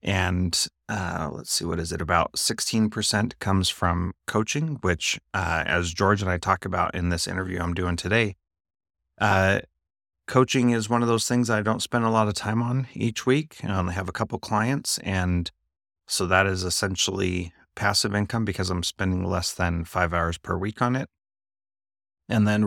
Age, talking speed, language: 30-49, 185 wpm, English